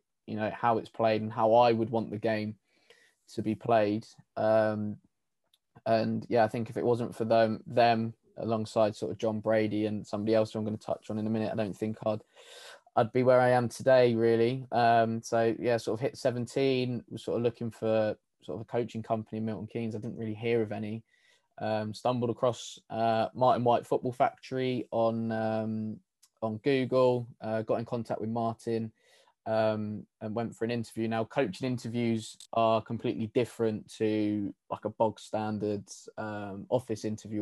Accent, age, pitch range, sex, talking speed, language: British, 20-39, 110-115 Hz, male, 190 wpm, English